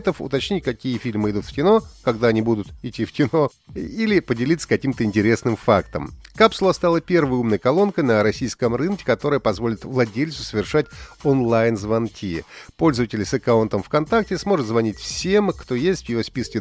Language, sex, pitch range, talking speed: Russian, male, 115-165 Hz, 150 wpm